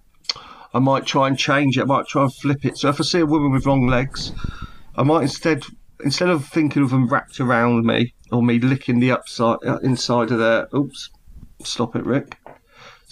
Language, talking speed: English, 205 wpm